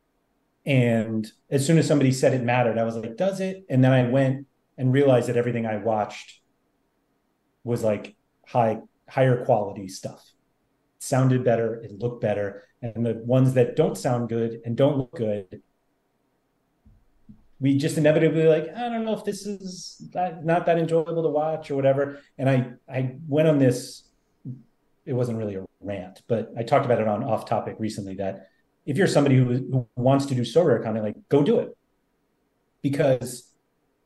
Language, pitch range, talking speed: English, 115-140 Hz, 175 wpm